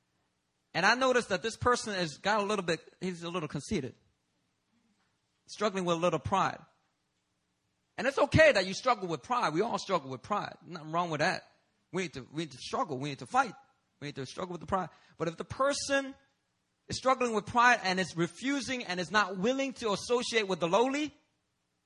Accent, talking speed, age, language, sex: American, 200 wpm, 30-49, English, male